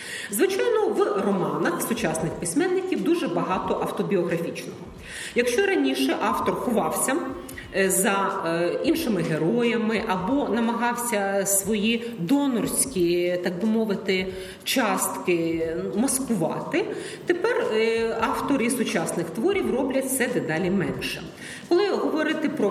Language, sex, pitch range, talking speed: Ukrainian, female, 175-280 Hz, 95 wpm